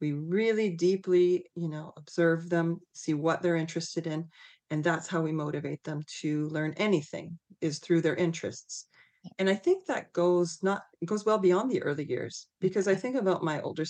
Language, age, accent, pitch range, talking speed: English, 40-59, American, 160-195 Hz, 190 wpm